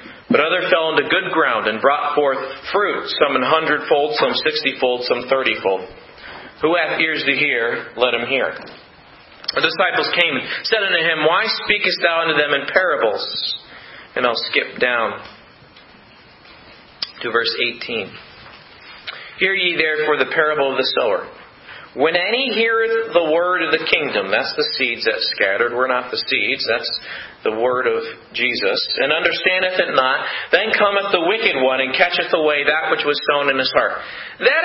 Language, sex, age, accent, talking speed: English, male, 40-59, American, 165 wpm